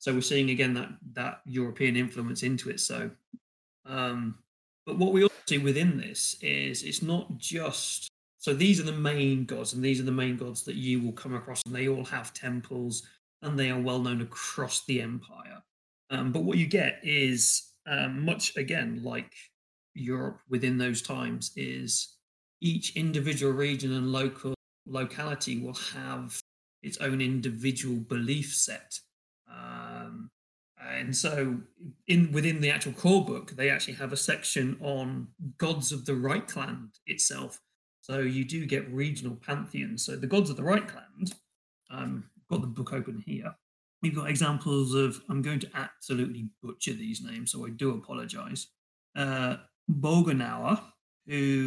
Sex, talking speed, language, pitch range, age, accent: male, 160 wpm, English, 125-155 Hz, 30-49, British